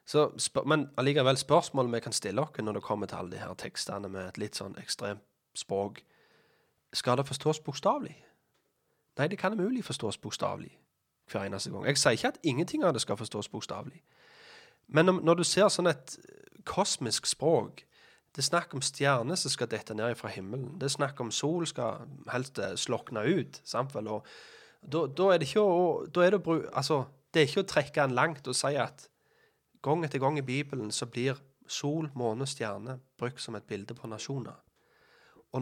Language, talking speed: Danish, 175 wpm